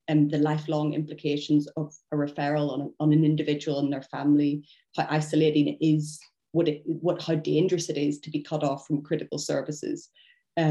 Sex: female